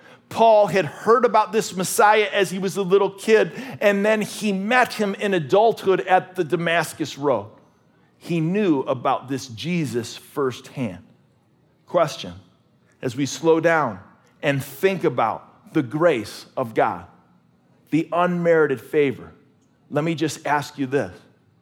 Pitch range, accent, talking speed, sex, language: 155-200 Hz, American, 140 wpm, male, English